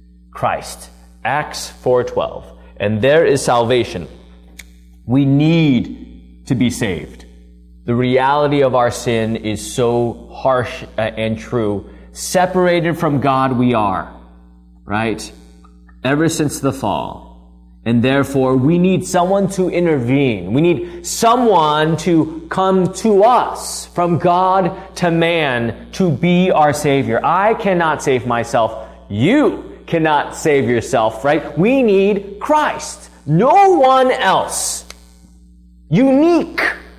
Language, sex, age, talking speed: English, male, 20-39, 115 wpm